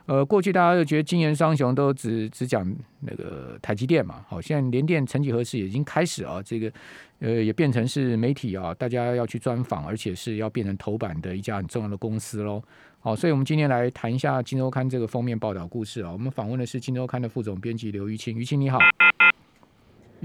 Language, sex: Chinese, male